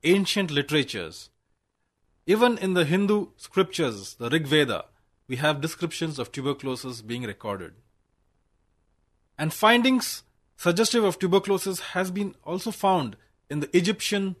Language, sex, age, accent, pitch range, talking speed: English, male, 30-49, Indian, 110-180 Hz, 120 wpm